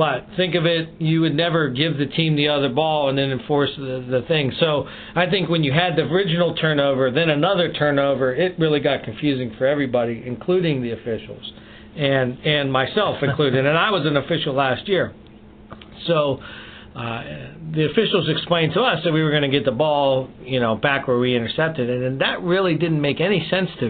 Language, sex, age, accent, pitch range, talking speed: English, male, 50-69, American, 130-165 Hz, 205 wpm